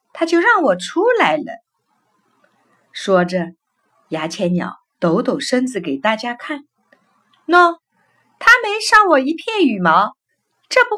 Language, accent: Chinese, native